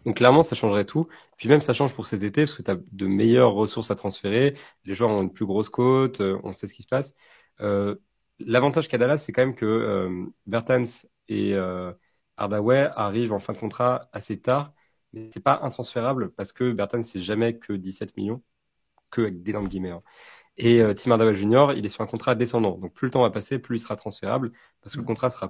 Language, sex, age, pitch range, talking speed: French, male, 30-49, 100-125 Hz, 230 wpm